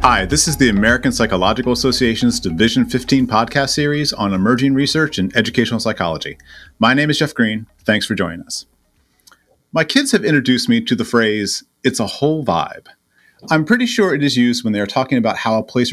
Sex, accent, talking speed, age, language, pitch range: male, American, 190 wpm, 30-49, English, 110-145 Hz